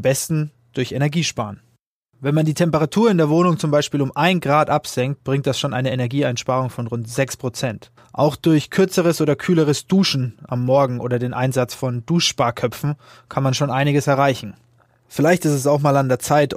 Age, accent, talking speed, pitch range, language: 20-39, German, 185 wpm, 120-145 Hz, German